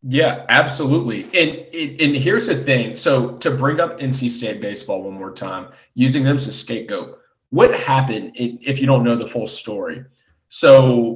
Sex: male